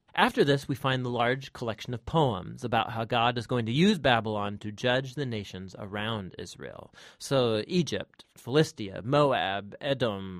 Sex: male